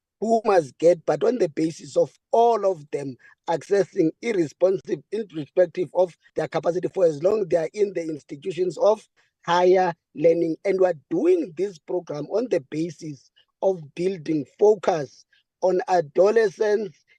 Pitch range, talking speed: 170-255 Hz, 145 wpm